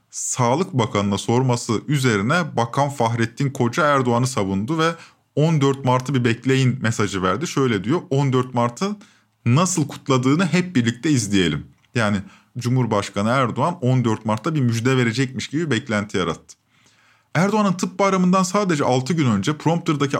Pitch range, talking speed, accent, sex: 115-155 Hz, 130 wpm, native, male